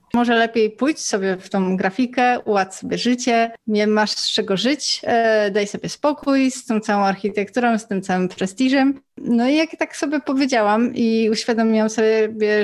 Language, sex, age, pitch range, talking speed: Polish, female, 20-39, 195-235 Hz, 170 wpm